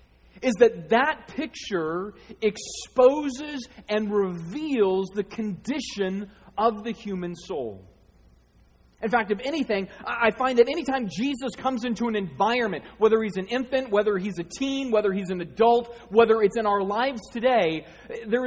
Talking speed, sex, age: 145 wpm, male, 30-49